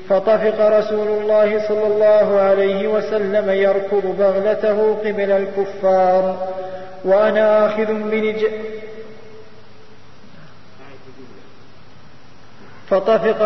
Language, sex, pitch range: Arabic, male, 185-210 Hz